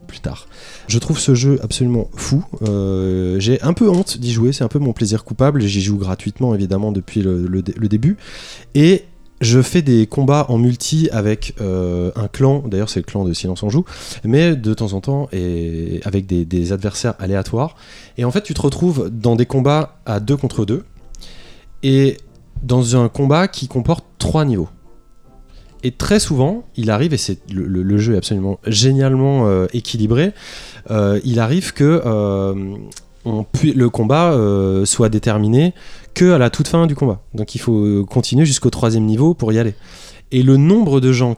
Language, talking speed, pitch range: French, 190 wpm, 105-140 Hz